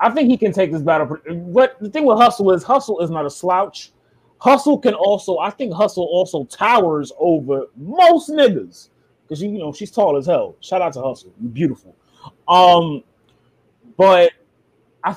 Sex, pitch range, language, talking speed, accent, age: male, 150-200 Hz, English, 180 wpm, American, 20-39